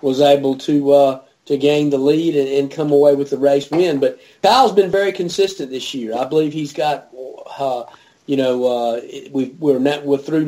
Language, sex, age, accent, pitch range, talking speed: English, male, 40-59, American, 130-155 Hz, 205 wpm